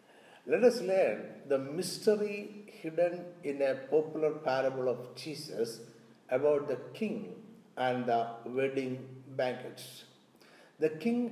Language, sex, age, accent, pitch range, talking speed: Malayalam, male, 50-69, native, 145-205 Hz, 110 wpm